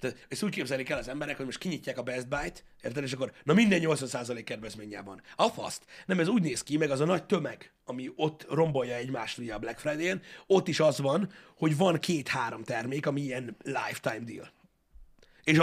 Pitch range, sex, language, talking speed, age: 125-165 Hz, male, Hungarian, 190 wpm, 30-49